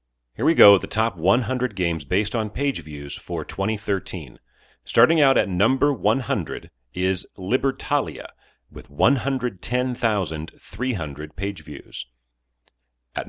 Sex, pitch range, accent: male, 65-110 Hz, American